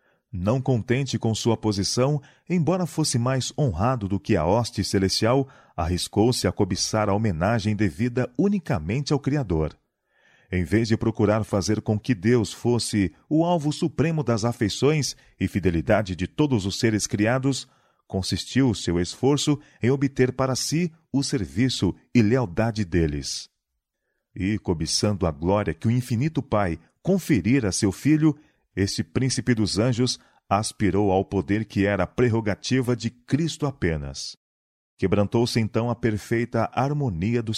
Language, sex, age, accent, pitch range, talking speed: Portuguese, male, 40-59, Brazilian, 100-135 Hz, 140 wpm